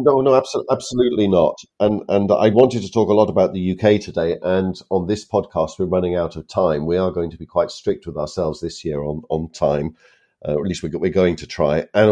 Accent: British